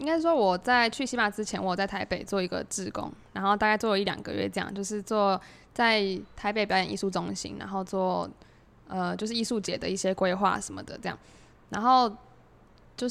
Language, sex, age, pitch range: Chinese, female, 10-29, 190-215 Hz